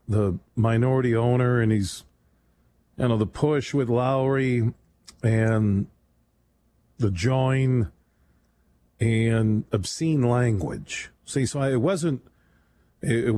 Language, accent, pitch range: English, American, 110-135 Hz